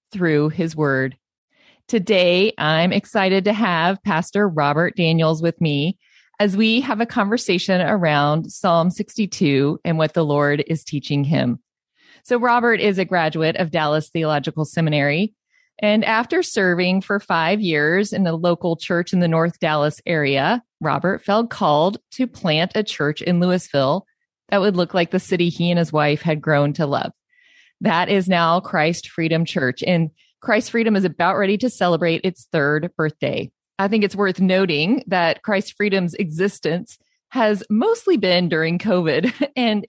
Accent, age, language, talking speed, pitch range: American, 30-49, English, 160 wpm, 165-210 Hz